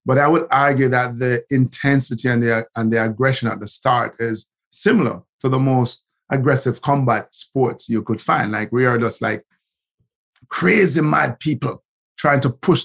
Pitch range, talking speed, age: 120-145 Hz, 175 wpm, 50-69